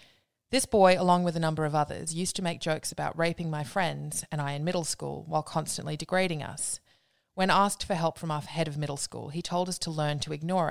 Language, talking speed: English, 235 wpm